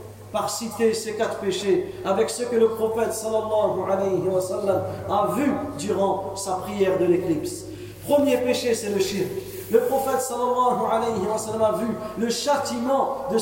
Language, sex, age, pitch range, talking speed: English, male, 40-59, 195-250 Hz, 150 wpm